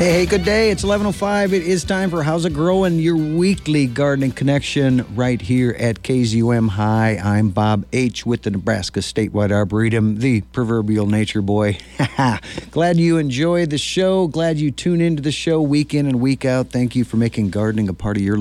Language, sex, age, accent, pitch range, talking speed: English, male, 50-69, American, 95-130 Hz, 190 wpm